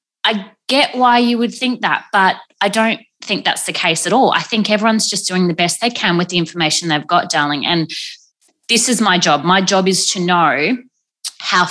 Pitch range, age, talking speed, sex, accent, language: 165-220 Hz, 20-39, 215 wpm, female, Australian, English